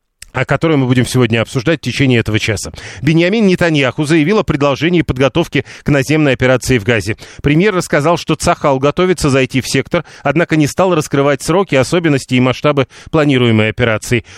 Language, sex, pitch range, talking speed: Russian, male, 130-155 Hz, 165 wpm